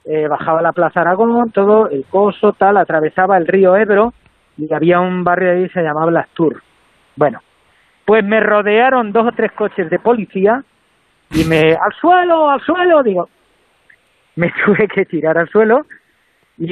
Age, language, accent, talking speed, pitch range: 40-59, Spanish, Spanish, 170 wpm, 165-210 Hz